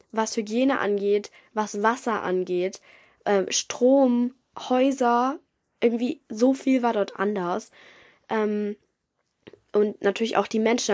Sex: female